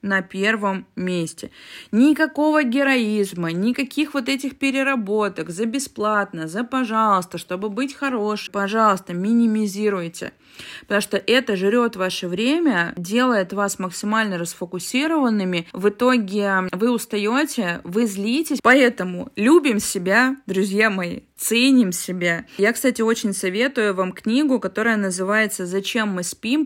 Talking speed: 115 wpm